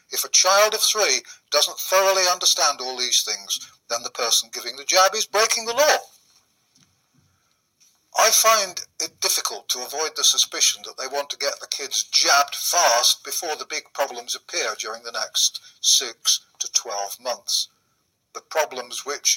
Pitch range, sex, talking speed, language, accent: 180-215 Hz, male, 165 wpm, English, British